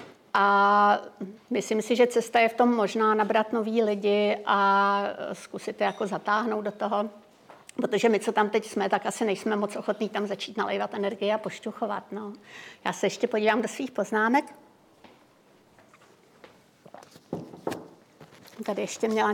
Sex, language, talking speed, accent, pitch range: female, Czech, 145 wpm, native, 215-250 Hz